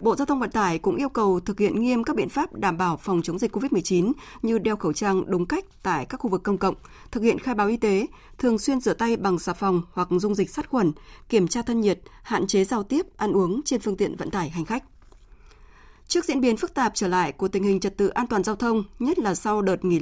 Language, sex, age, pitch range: Vietnamese, female, 20-39, 185-235 Hz